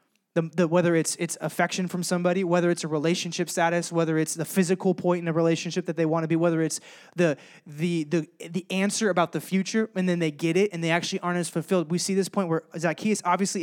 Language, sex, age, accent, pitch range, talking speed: English, male, 20-39, American, 155-190 Hz, 240 wpm